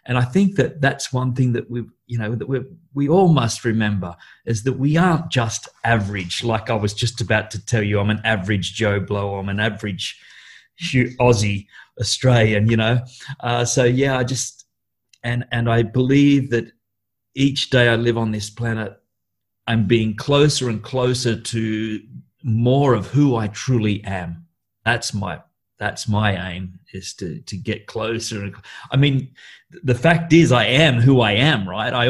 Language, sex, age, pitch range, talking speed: English, male, 40-59, 105-125 Hz, 175 wpm